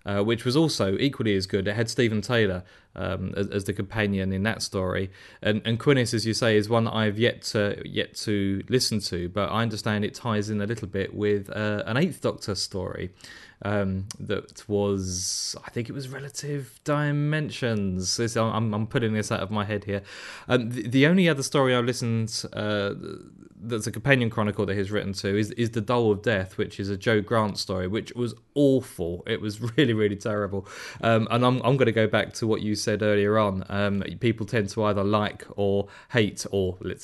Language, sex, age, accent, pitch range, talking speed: English, male, 20-39, British, 100-120 Hz, 210 wpm